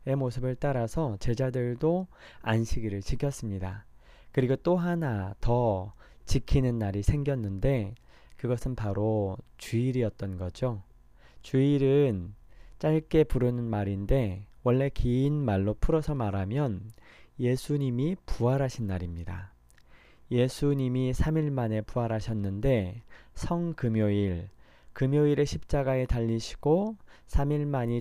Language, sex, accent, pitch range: Korean, male, native, 105-140 Hz